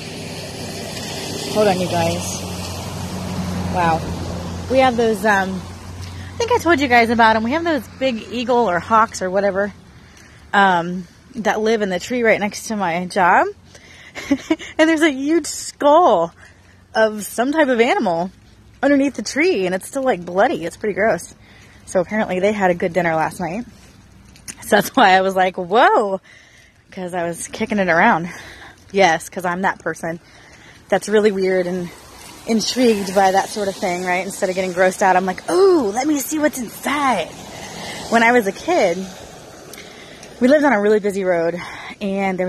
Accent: American